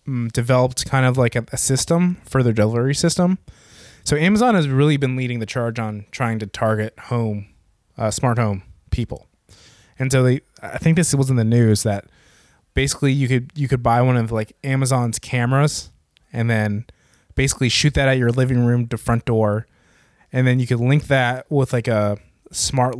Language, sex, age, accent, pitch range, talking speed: English, male, 20-39, American, 115-135 Hz, 185 wpm